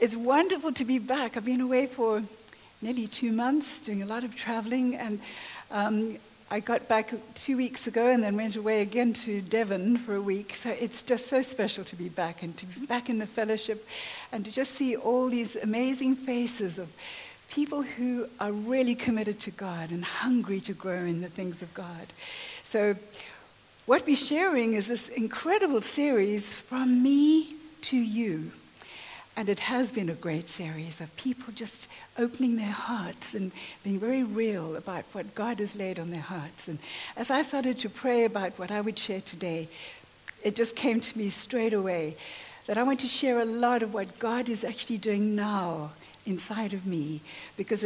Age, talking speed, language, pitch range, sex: 60-79, 185 wpm, English, 195-245 Hz, female